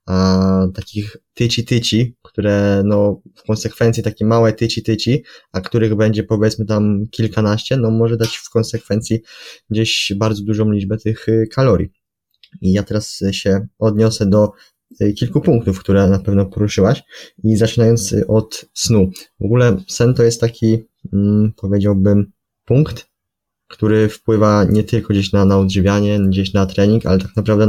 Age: 20-39